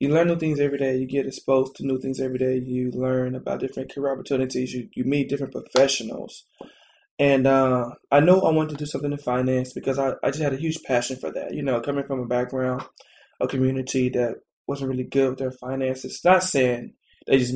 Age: 20-39